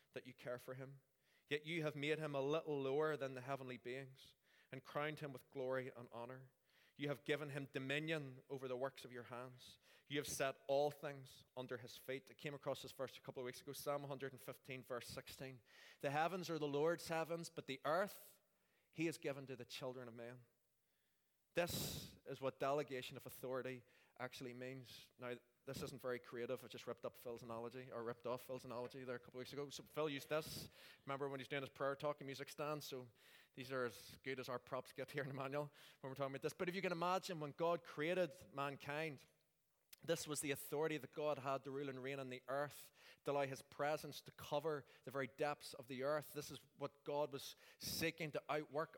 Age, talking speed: 20-39, 220 wpm